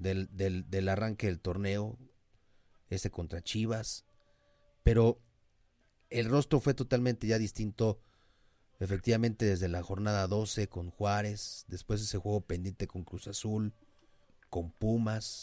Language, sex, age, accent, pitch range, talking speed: Spanish, male, 30-49, Mexican, 100-125 Hz, 120 wpm